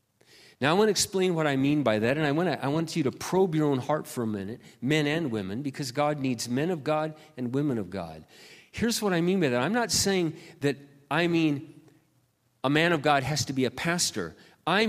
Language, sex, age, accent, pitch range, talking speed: English, male, 50-69, American, 120-175 Hz, 240 wpm